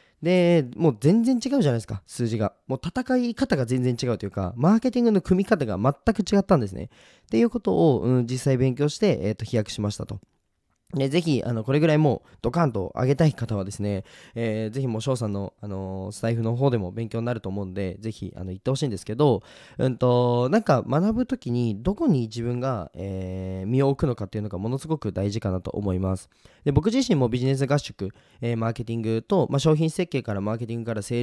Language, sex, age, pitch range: Japanese, male, 20-39, 105-155 Hz